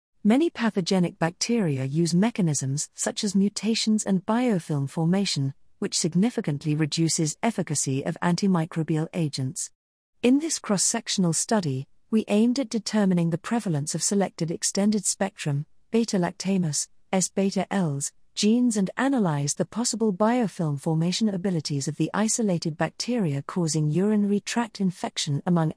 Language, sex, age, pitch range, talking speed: English, female, 40-59, 155-205 Hz, 115 wpm